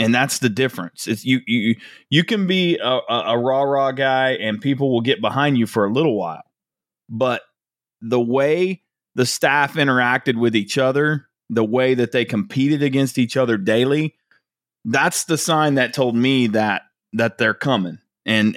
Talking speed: 170 wpm